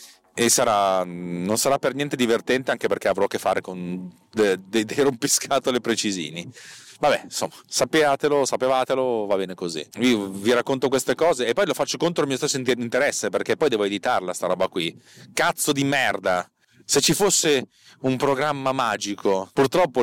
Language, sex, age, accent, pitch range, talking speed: Italian, male, 30-49, native, 115-185 Hz, 170 wpm